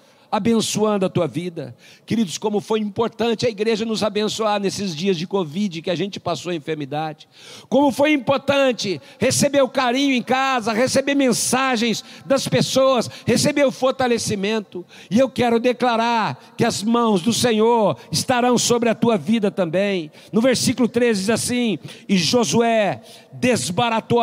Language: Portuguese